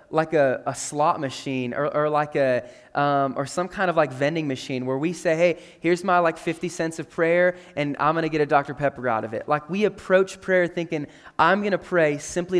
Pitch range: 150-180 Hz